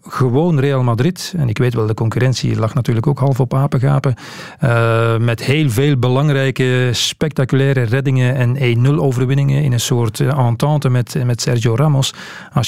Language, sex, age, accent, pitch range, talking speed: Dutch, male, 40-59, Dutch, 115-140 Hz, 165 wpm